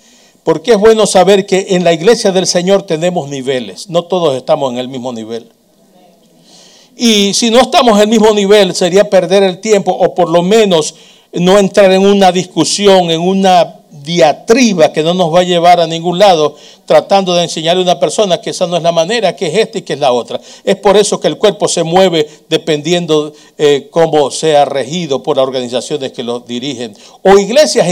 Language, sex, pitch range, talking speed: Spanish, male, 160-210 Hz, 200 wpm